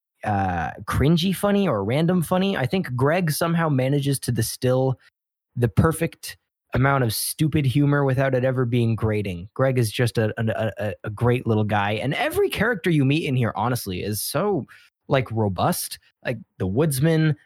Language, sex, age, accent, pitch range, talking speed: English, male, 20-39, American, 110-140 Hz, 165 wpm